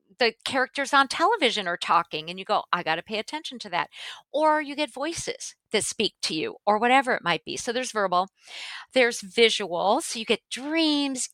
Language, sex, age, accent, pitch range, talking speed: English, female, 50-69, American, 190-265 Hz, 200 wpm